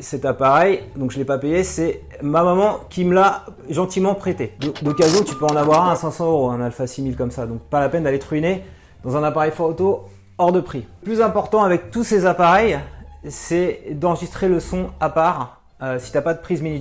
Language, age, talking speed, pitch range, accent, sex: French, 30-49, 230 wpm, 140-180 Hz, French, male